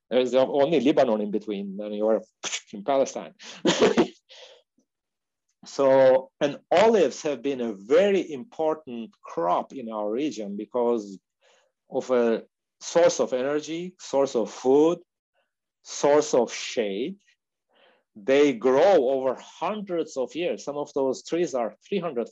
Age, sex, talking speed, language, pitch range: 50-69, male, 120 wpm, English, 120-175 Hz